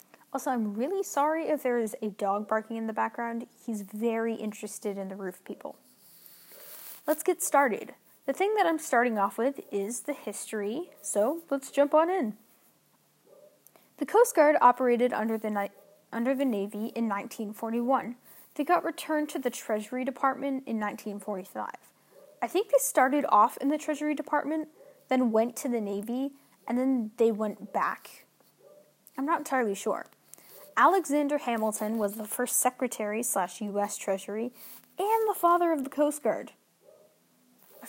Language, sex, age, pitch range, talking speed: English, female, 10-29, 210-290 Hz, 155 wpm